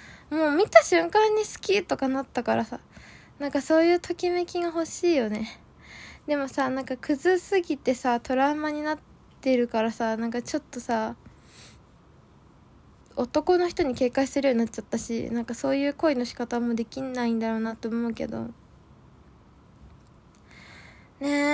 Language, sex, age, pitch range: Japanese, female, 20-39, 255-310 Hz